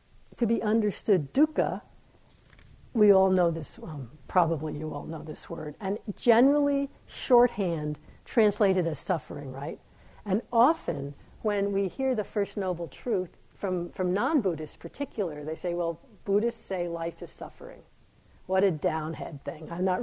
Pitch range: 170-220 Hz